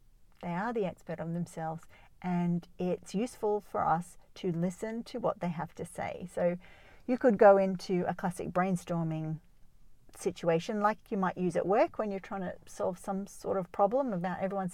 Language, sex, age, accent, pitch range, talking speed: English, female, 50-69, Australian, 170-205 Hz, 185 wpm